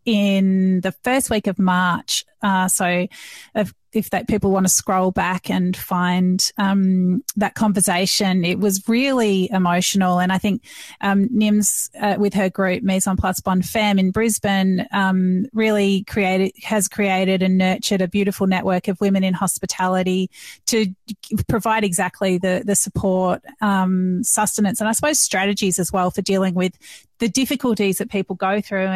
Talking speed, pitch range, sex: 160 wpm, 190-220 Hz, female